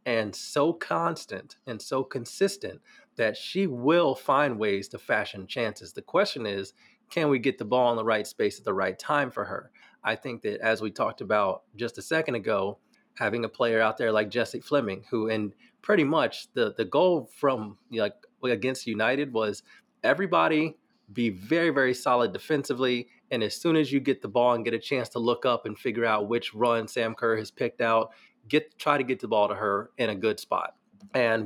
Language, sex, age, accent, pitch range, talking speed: English, male, 30-49, American, 110-140 Hz, 205 wpm